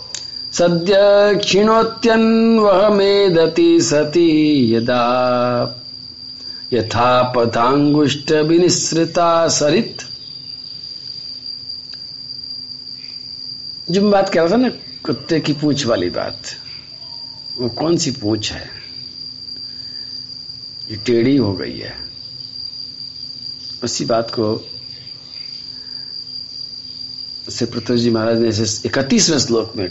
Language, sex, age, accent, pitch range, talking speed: Hindi, male, 50-69, native, 125-140 Hz, 80 wpm